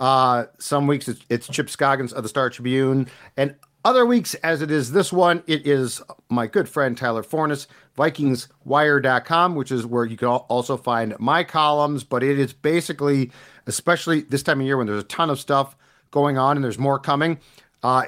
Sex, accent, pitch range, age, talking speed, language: male, American, 130-160 Hz, 40-59, 195 wpm, English